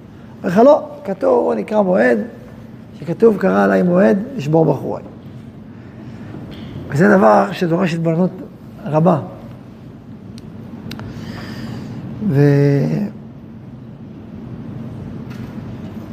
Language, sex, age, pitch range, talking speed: Hebrew, male, 50-69, 120-195 Hz, 65 wpm